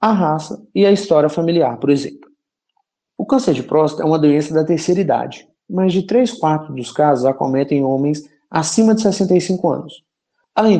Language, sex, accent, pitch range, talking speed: Portuguese, male, Brazilian, 135-185 Hz, 170 wpm